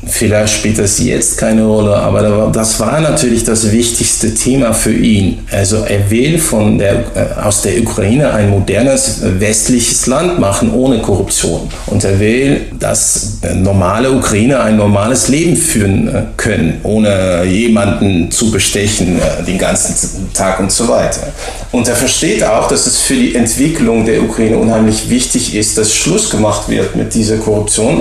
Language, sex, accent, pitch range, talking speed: German, male, German, 105-120 Hz, 150 wpm